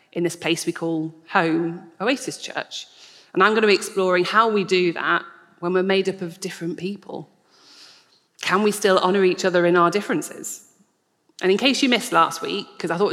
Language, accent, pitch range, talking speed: English, British, 175-265 Hz, 195 wpm